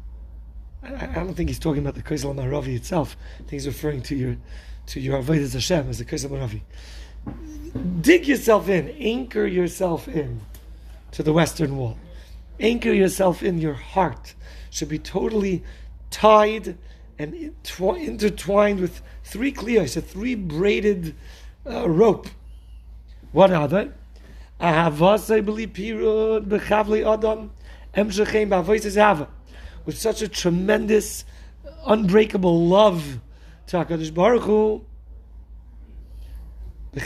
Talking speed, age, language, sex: 115 wpm, 30-49, English, male